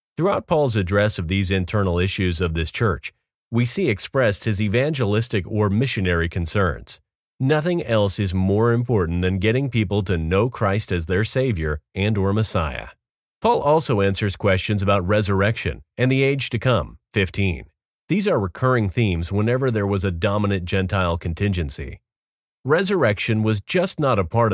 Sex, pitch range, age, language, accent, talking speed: male, 90-115 Hz, 40-59, English, American, 155 wpm